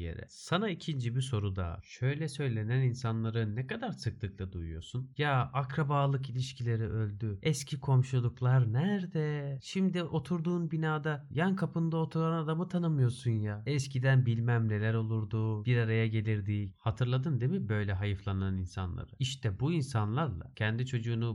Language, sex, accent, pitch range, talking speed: Turkish, male, native, 105-135 Hz, 130 wpm